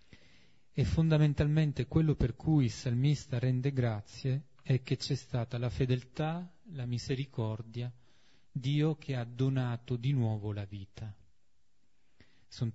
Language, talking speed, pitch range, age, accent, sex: Italian, 120 wpm, 115-135 Hz, 30-49, native, male